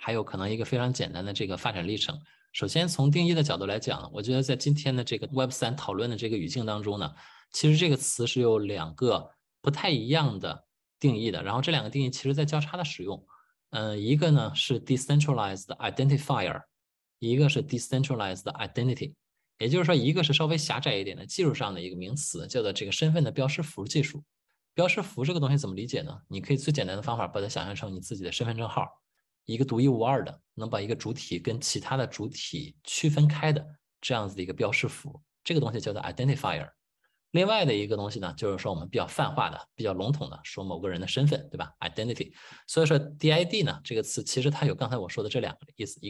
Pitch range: 110-150 Hz